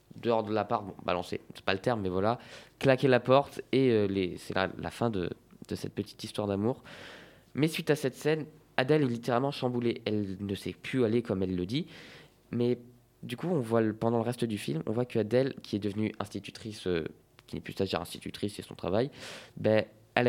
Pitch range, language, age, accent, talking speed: 105-130 Hz, French, 20-39, French, 225 wpm